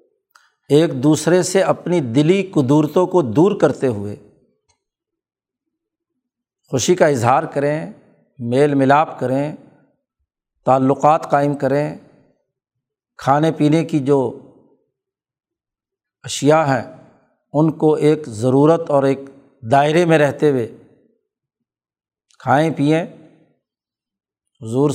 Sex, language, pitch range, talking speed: male, Urdu, 135-175 Hz, 95 wpm